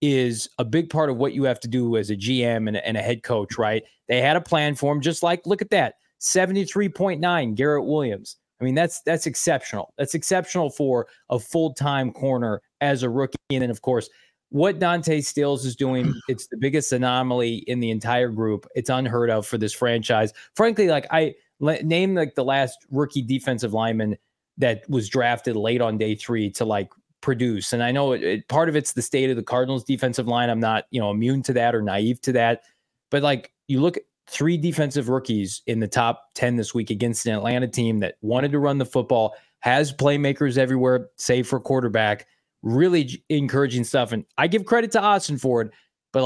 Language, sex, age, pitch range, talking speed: English, male, 20-39, 120-150 Hz, 205 wpm